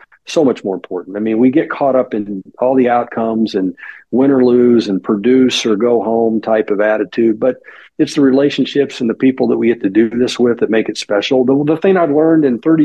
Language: English